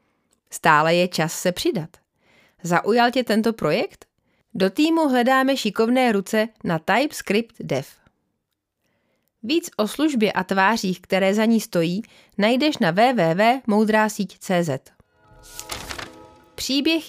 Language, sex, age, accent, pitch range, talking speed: Czech, female, 30-49, native, 185-235 Hz, 105 wpm